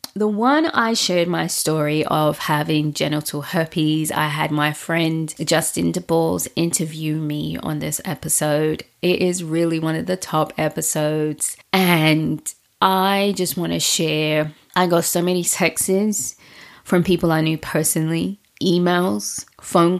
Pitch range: 155-175 Hz